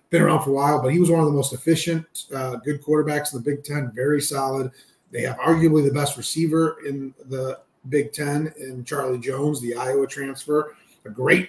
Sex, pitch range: male, 130-155 Hz